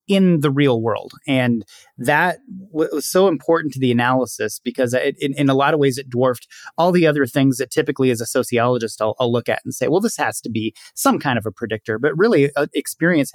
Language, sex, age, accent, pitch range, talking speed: English, male, 30-49, American, 130-165 Hz, 225 wpm